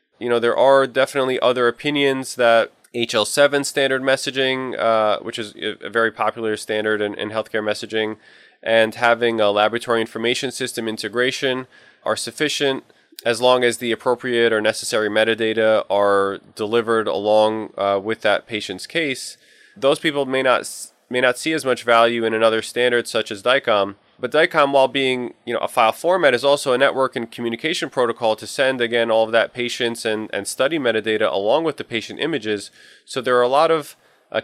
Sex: male